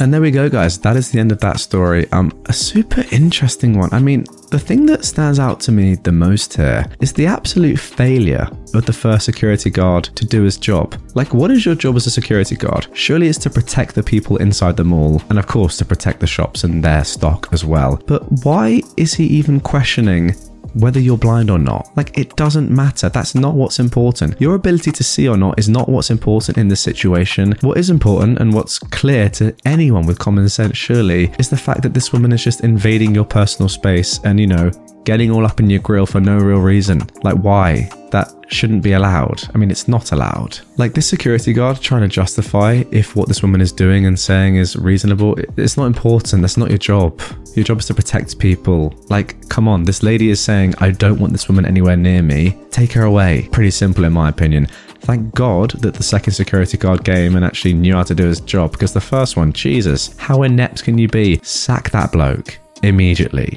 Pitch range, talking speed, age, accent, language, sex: 95-120 Hz, 220 wpm, 20-39, British, English, male